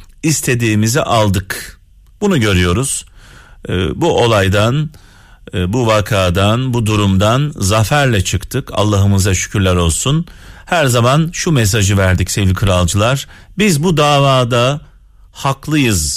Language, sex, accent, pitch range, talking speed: Turkish, male, native, 100-140 Hz, 95 wpm